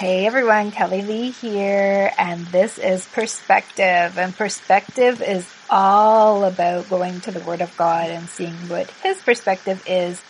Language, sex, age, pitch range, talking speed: English, female, 30-49, 180-220 Hz, 150 wpm